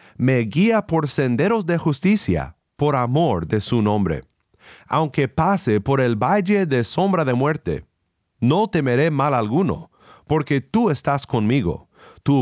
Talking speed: 140 wpm